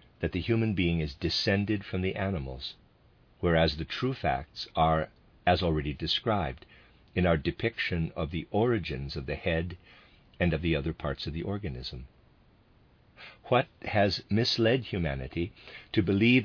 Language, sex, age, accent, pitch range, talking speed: English, male, 50-69, American, 80-105 Hz, 145 wpm